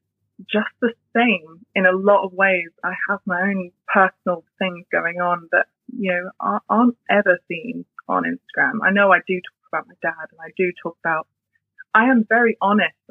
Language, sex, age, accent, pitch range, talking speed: English, female, 20-39, British, 170-210 Hz, 190 wpm